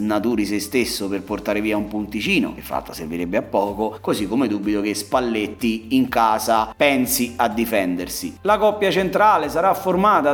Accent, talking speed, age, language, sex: native, 165 wpm, 30-49, Italian, male